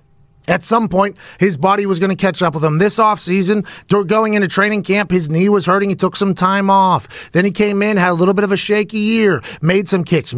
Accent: American